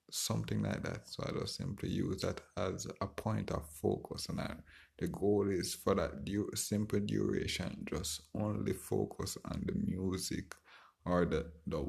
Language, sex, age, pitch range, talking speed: English, male, 20-39, 85-105 Hz, 165 wpm